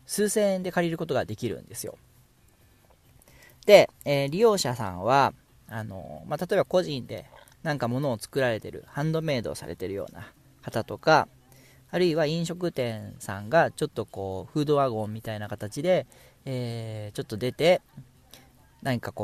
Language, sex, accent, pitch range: Japanese, male, native, 110-155 Hz